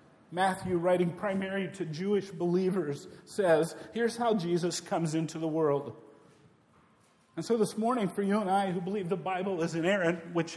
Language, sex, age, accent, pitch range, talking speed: English, male, 50-69, American, 160-200 Hz, 165 wpm